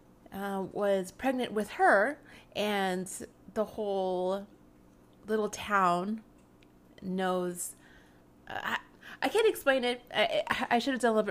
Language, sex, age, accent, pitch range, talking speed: English, female, 30-49, American, 185-240 Hz, 125 wpm